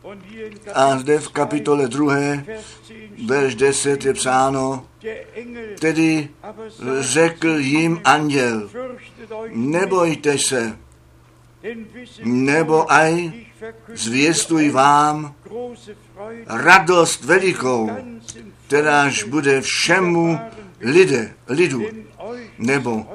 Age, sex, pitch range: 60-79, male, 135-200 Hz